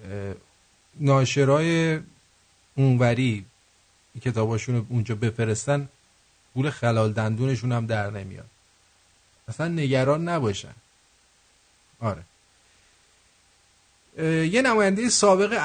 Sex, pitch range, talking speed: male, 115-170 Hz, 75 wpm